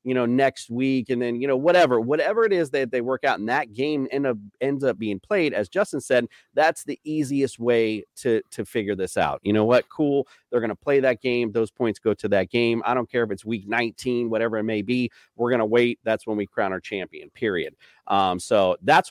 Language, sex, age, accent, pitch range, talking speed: English, male, 30-49, American, 110-135 Hz, 240 wpm